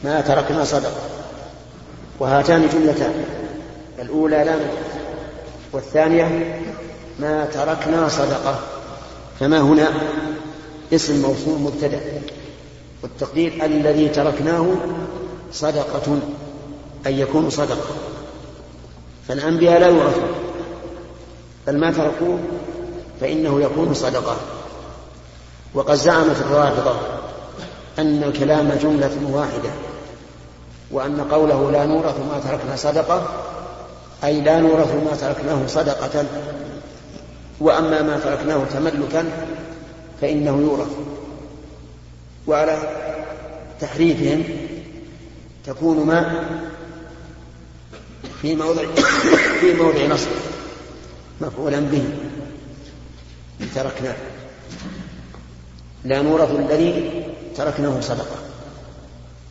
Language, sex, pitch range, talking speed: Arabic, male, 140-155 Hz, 75 wpm